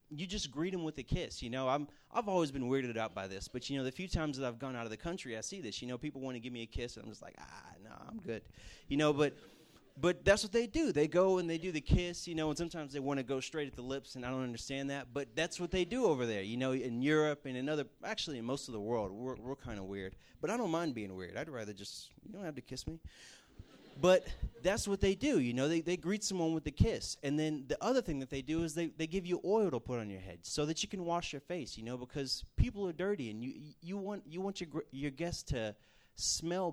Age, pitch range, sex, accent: 30-49, 120-175 Hz, male, American